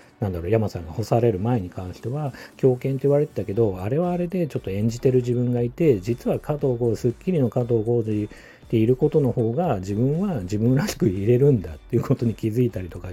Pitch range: 100-130 Hz